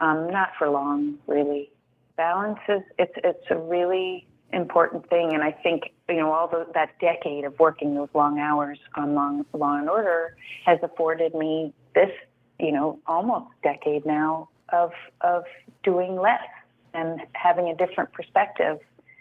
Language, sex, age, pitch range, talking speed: English, female, 30-49, 155-175 Hz, 145 wpm